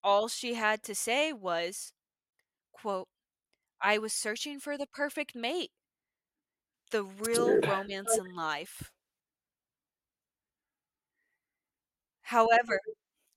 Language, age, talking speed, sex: English, 20-39, 90 wpm, female